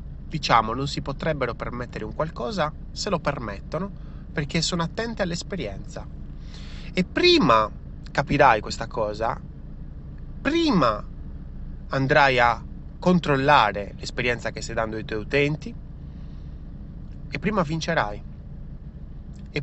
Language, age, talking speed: Italian, 30-49, 105 wpm